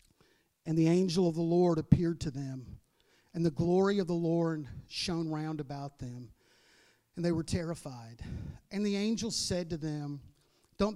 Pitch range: 145-180 Hz